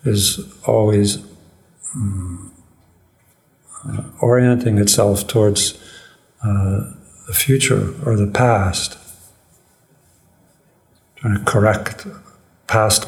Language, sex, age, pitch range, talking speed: English, male, 60-79, 100-125 Hz, 80 wpm